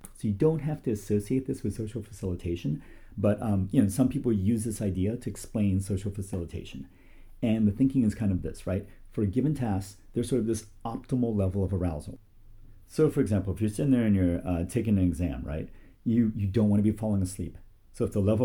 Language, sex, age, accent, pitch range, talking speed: English, male, 40-59, American, 95-115 Hz, 225 wpm